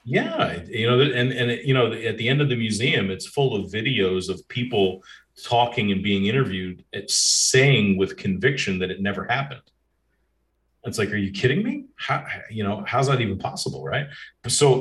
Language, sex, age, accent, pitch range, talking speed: English, male, 40-59, American, 95-125 Hz, 180 wpm